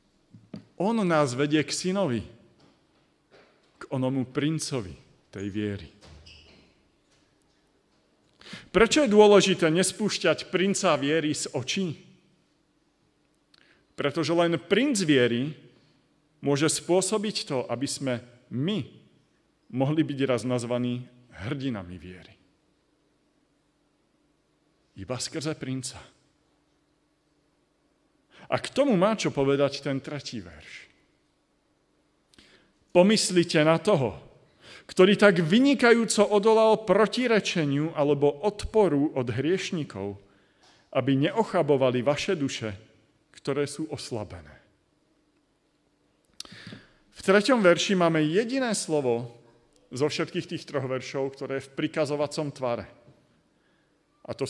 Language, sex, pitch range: Slovak, male, 130-185 Hz